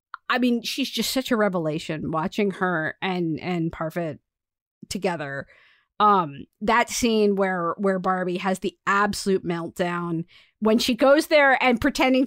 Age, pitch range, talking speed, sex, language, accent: 40-59, 190-270 Hz, 140 wpm, female, English, American